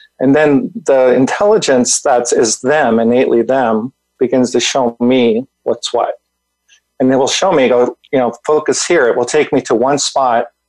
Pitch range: 120-160 Hz